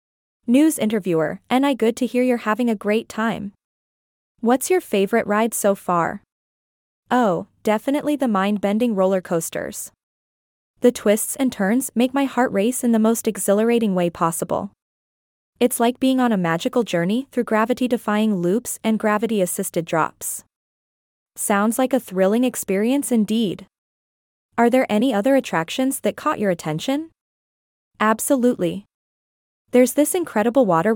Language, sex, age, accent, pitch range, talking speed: English, female, 20-39, American, 200-250 Hz, 140 wpm